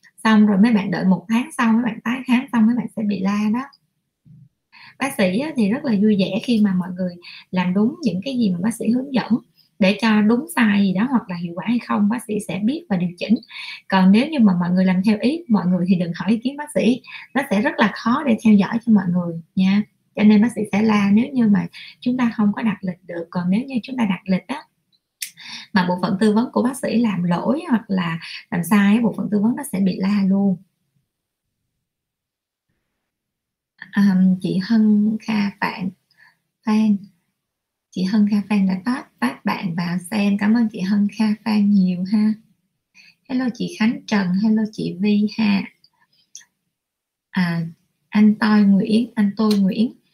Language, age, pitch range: Vietnamese, 20-39, 190-225 Hz